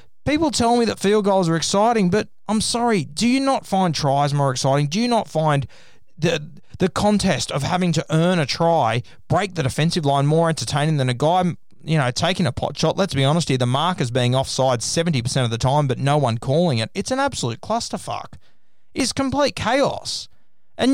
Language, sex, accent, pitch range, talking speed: English, male, Australian, 130-175 Hz, 205 wpm